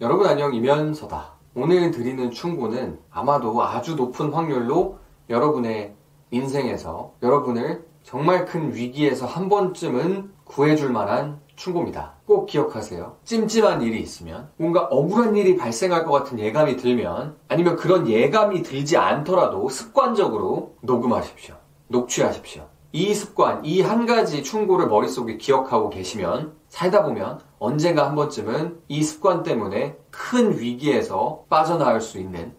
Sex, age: male, 30-49